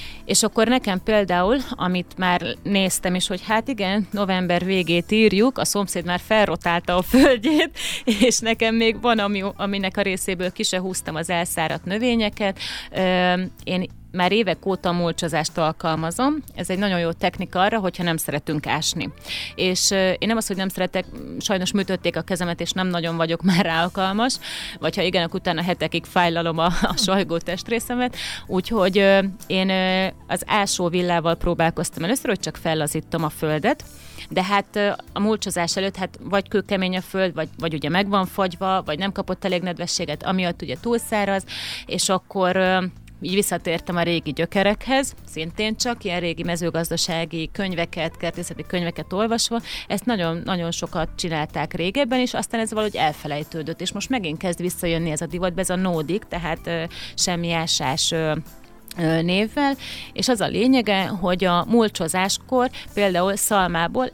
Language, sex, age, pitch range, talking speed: Hungarian, female, 30-49, 170-205 Hz, 155 wpm